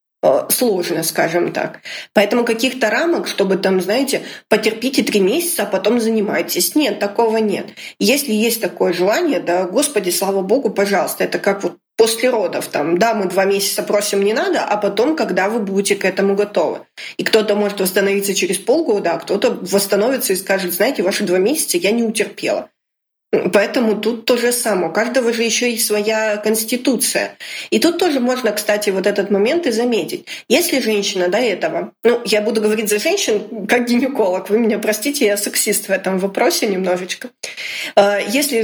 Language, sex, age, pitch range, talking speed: Russian, female, 20-39, 200-245 Hz, 170 wpm